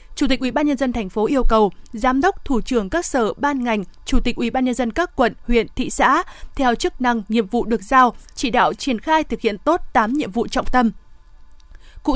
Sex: female